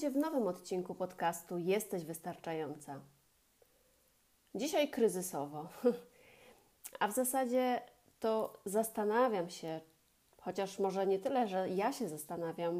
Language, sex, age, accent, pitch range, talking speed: Polish, female, 30-49, native, 175-230 Hz, 105 wpm